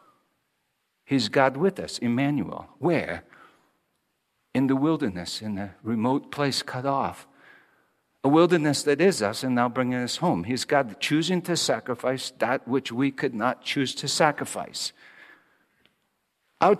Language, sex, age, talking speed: English, male, 50-69, 140 wpm